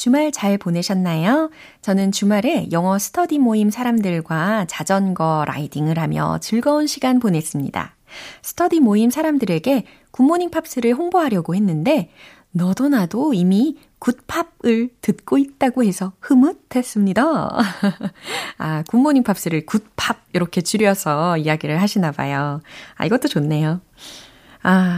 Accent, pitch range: native, 155-230 Hz